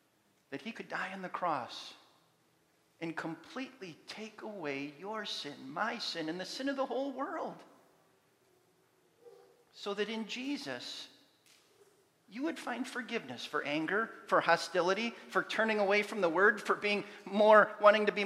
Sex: male